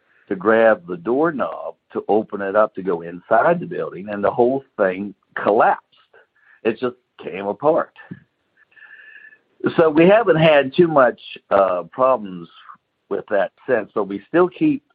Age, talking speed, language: 60-79, 150 wpm, English